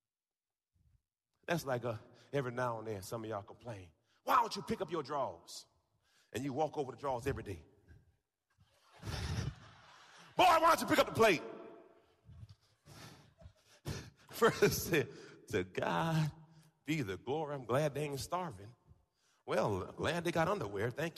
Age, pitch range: 40-59, 115-155 Hz